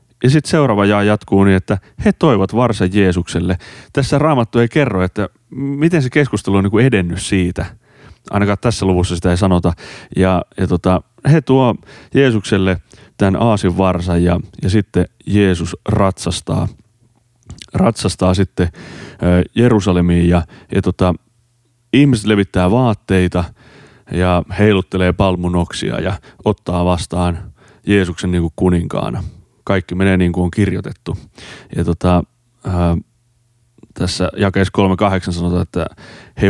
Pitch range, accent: 90-110 Hz, native